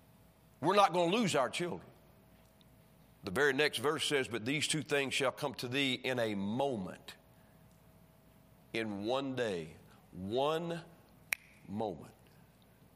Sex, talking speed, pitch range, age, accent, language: male, 130 wpm, 140-195 Hz, 40-59, American, English